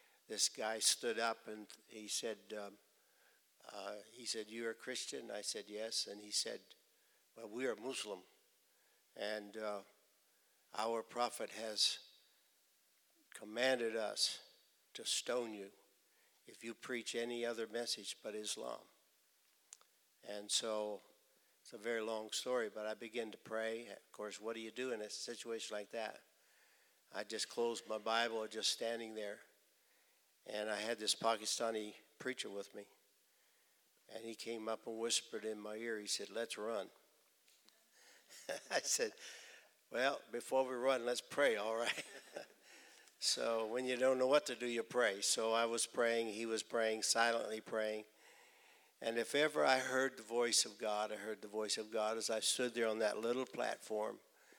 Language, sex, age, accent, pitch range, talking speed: English, male, 60-79, American, 105-120 Hz, 160 wpm